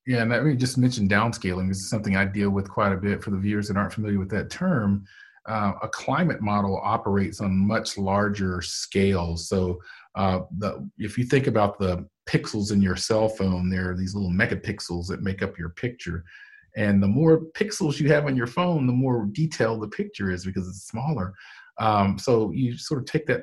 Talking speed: 215 wpm